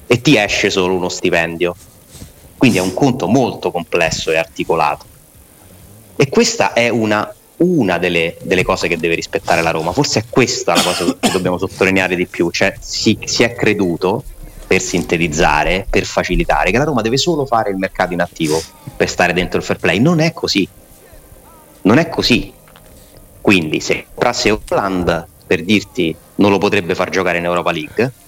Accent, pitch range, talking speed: native, 90-115 Hz, 175 wpm